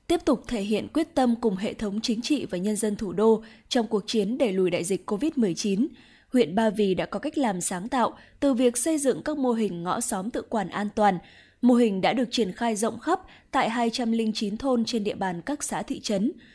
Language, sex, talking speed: Vietnamese, female, 230 wpm